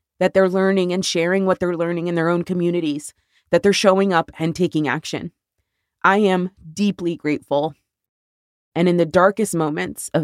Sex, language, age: female, English, 20-39